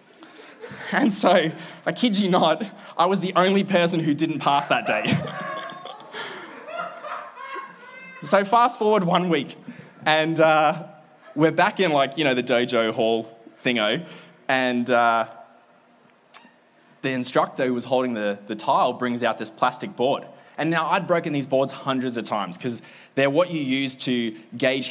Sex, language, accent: male, English, Australian